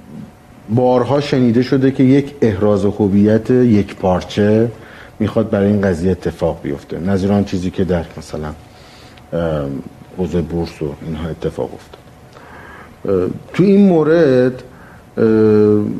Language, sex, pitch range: Persian, male, 95-115 Hz